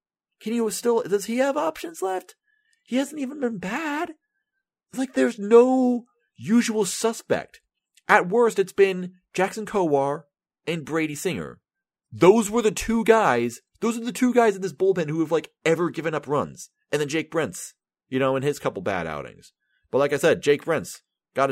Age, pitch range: 30-49, 140-235 Hz